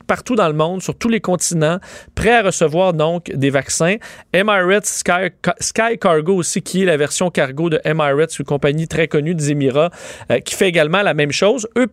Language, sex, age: French, male, 30-49